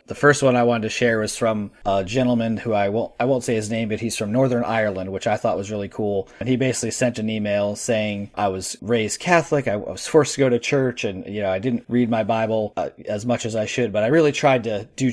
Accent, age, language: American, 30-49, English